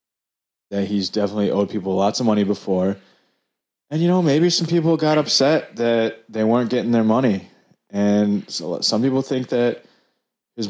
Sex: male